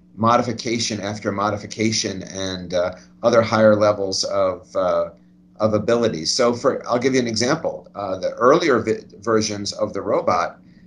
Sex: male